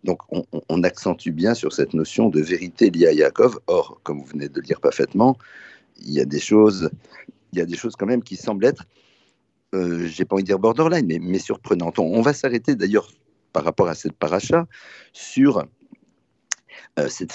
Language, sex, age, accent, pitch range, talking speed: French, male, 50-69, French, 90-135 Hz, 195 wpm